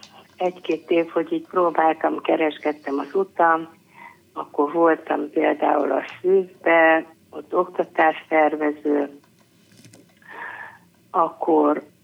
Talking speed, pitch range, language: 80 wpm, 150-185 Hz, Hungarian